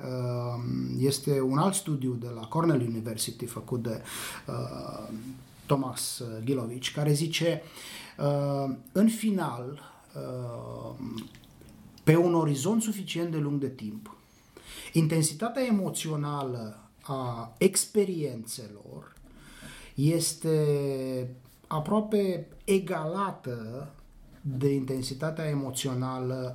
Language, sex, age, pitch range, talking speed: Romanian, male, 30-49, 125-155 Hz, 85 wpm